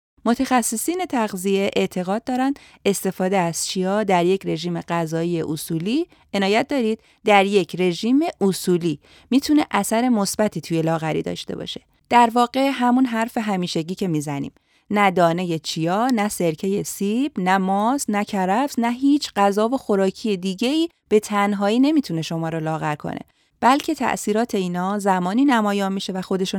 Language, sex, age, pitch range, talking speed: Persian, female, 30-49, 175-235 Hz, 140 wpm